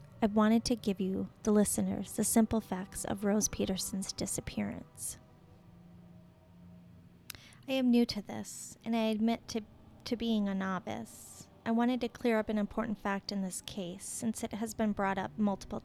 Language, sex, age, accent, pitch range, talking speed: English, female, 30-49, American, 190-225 Hz, 170 wpm